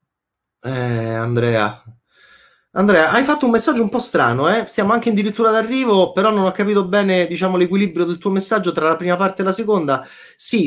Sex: male